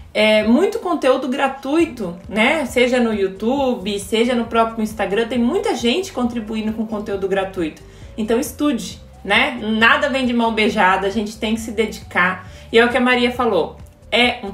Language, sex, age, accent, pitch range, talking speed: Portuguese, female, 20-39, Brazilian, 210-250 Hz, 175 wpm